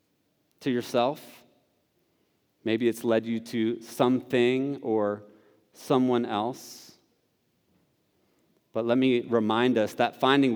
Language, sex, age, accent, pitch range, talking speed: English, male, 30-49, American, 120-145 Hz, 100 wpm